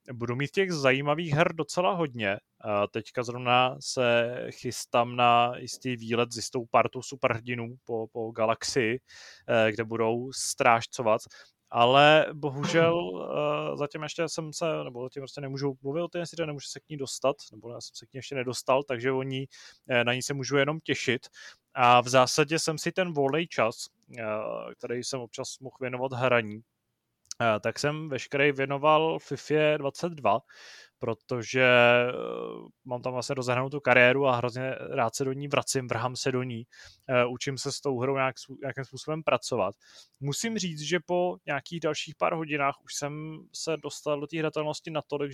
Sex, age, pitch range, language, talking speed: male, 20-39, 115-140 Hz, Czech, 160 wpm